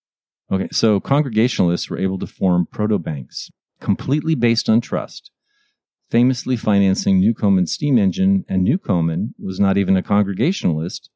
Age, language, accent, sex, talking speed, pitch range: 50-69, English, American, male, 130 wpm, 95-130 Hz